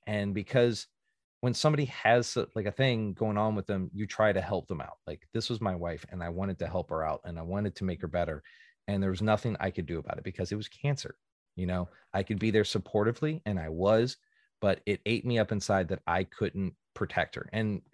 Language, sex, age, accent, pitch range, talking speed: English, male, 30-49, American, 90-110 Hz, 240 wpm